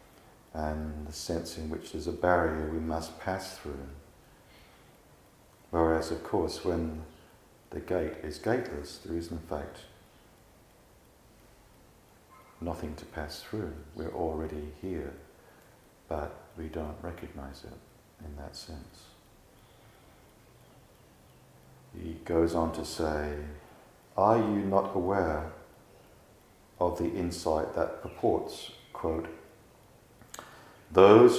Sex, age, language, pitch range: male, 50-69, English, 75-90 Hz